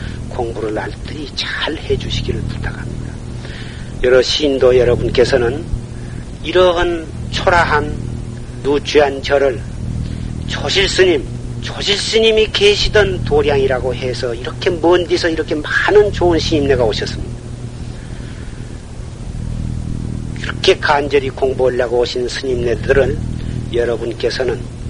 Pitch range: 120-145 Hz